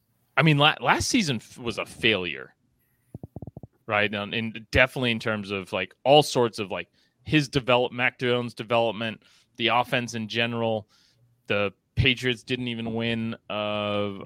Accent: American